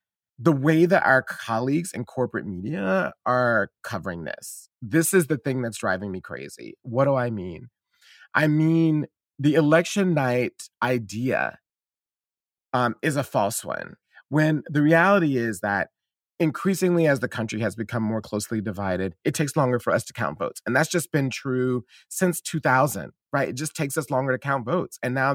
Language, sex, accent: English, male, American